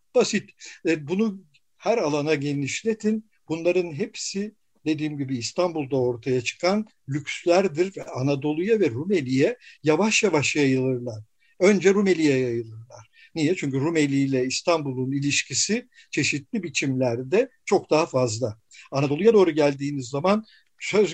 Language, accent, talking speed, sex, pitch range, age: Turkish, native, 110 wpm, male, 135-185 Hz, 60-79